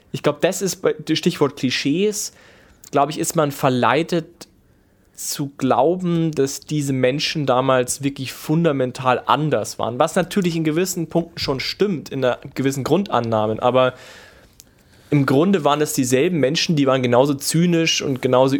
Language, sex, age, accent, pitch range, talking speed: German, male, 20-39, German, 125-150 Hz, 150 wpm